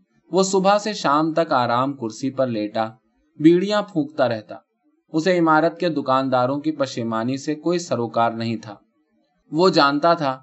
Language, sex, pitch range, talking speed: Urdu, male, 125-170 Hz, 160 wpm